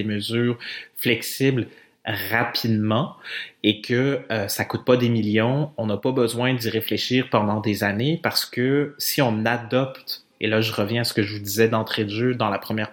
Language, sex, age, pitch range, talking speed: French, male, 30-49, 110-125 Hz, 190 wpm